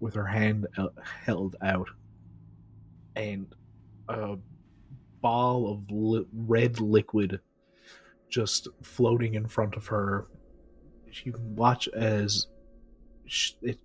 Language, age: English, 30-49